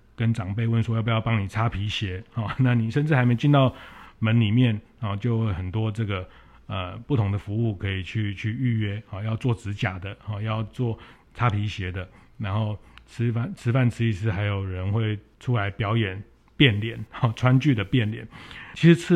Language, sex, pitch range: Chinese, male, 100-120 Hz